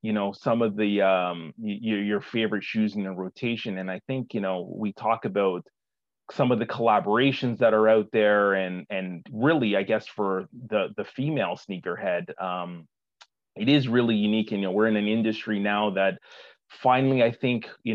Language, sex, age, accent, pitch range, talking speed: English, male, 30-49, American, 100-115 Hz, 185 wpm